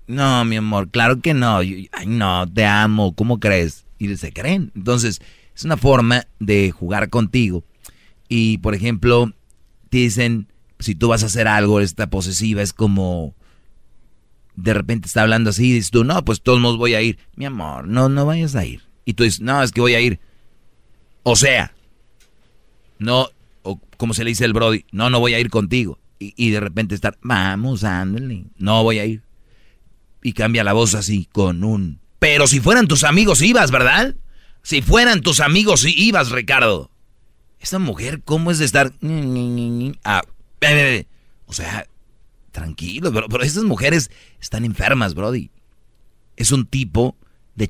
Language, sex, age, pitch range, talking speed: Spanish, male, 40-59, 100-125 Hz, 170 wpm